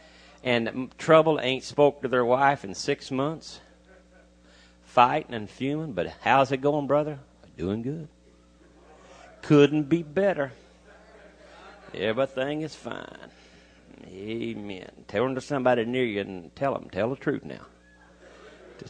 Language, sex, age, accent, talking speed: English, male, 50-69, American, 130 wpm